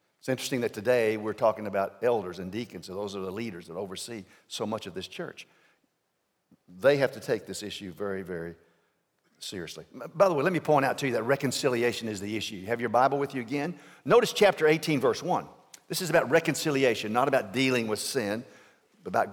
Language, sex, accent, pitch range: English, male, American, 130-190 Hz